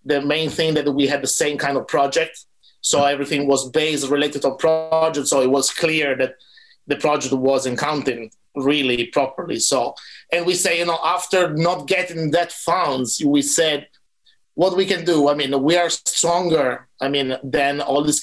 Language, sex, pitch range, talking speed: English, male, 140-175 Hz, 185 wpm